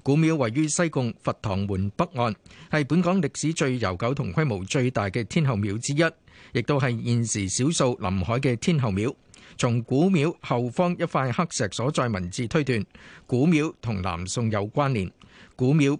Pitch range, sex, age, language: 115-155 Hz, male, 50-69, Chinese